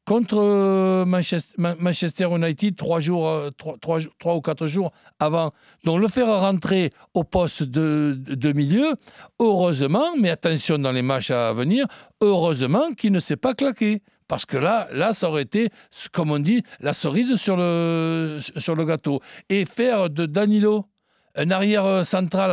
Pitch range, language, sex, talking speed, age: 145-195 Hz, French, male, 155 wpm, 60-79